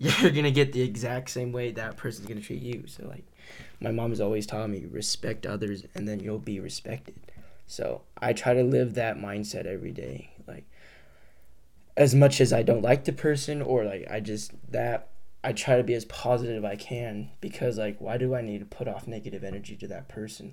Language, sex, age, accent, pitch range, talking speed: English, male, 10-29, American, 105-130 Hz, 220 wpm